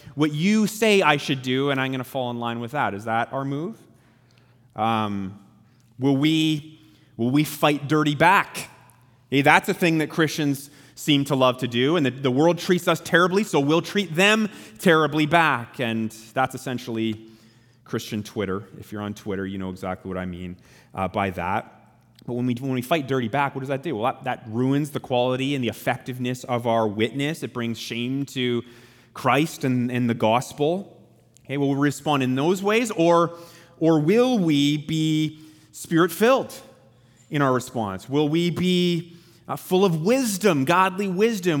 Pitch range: 120-165 Hz